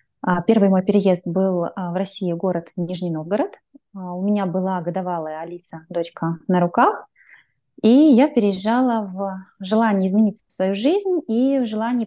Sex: female